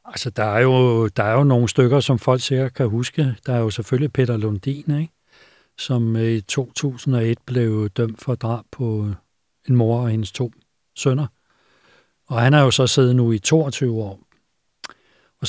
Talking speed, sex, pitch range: 180 wpm, male, 115-135 Hz